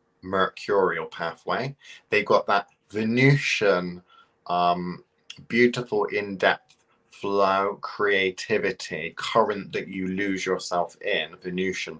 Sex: male